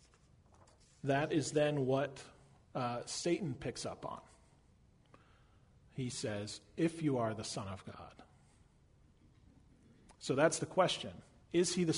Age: 40-59